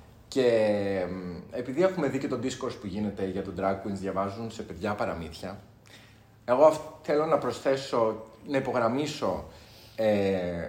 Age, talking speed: 30-49, 135 wpm